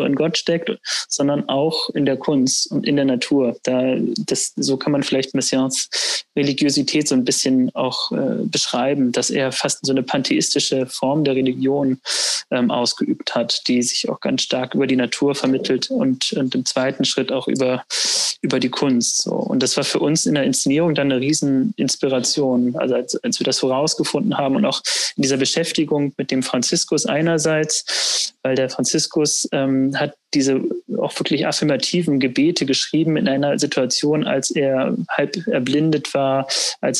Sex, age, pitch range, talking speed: male, 20-39, 130-155 Hz, 170 wpm